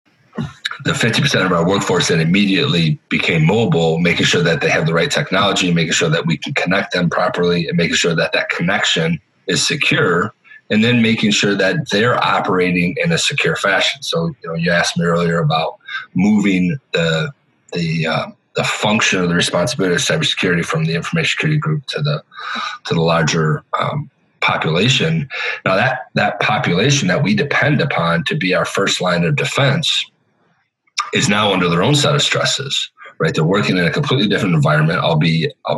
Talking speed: 185 wpm